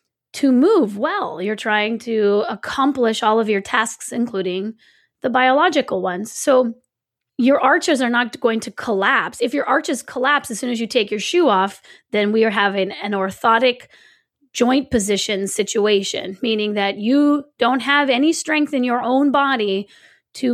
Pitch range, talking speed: 205-265 Hz, 165 wpm